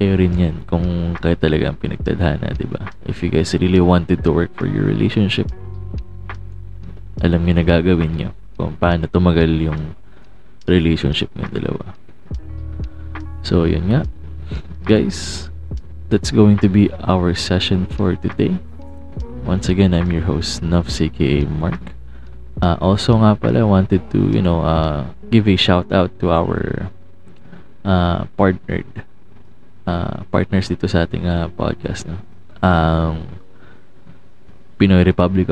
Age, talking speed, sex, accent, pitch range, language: 20-39, 135 wpm, male, Filipino, 85-95 Hz, English